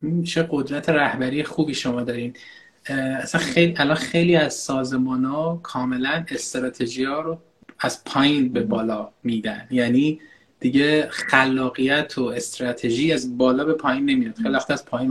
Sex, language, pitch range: male, Persian, 130-170 Hz